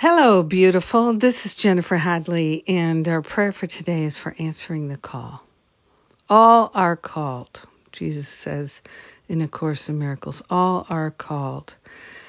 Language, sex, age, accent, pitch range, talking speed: English, female, 60-79, American, 155-185 Hz, 140 wpm